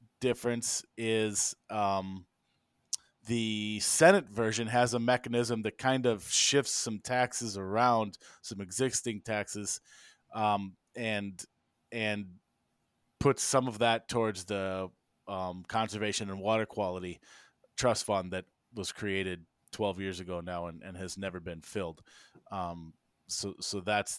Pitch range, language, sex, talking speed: 100-125 Hz, English, male, 130 wpm